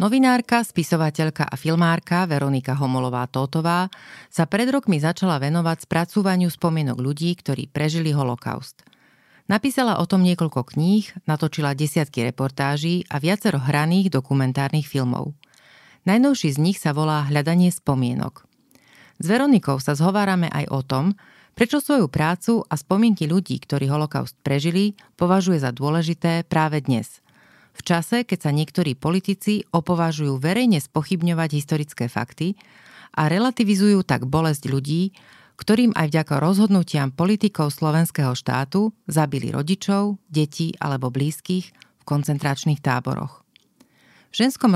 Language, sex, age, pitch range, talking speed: Slovak, female, 30-49, 145-190 Hz, 120 wpm